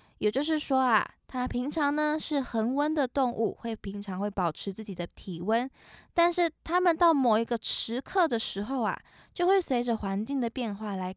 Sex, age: female, 20-39